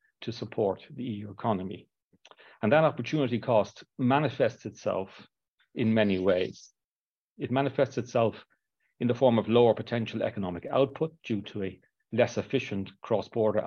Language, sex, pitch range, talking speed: English, male, 100-120 Hz, 135 wpm